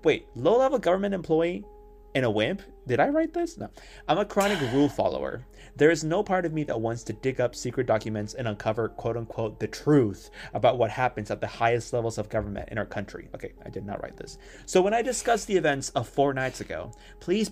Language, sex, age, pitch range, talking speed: English, male, 20-39, 105-145 Hz, 220 wpm